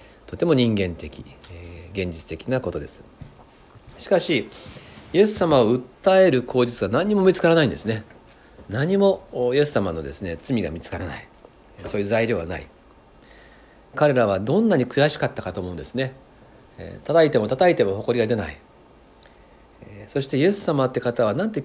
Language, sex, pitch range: Japanese, male, 95-145 Hz